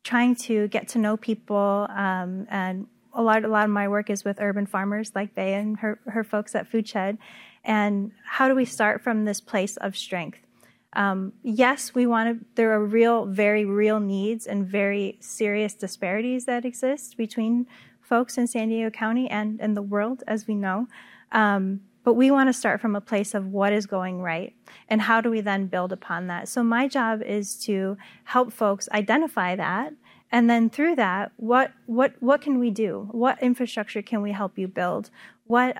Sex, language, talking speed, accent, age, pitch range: female, English, 195 wpm, American, 30-49, 200-235 Hz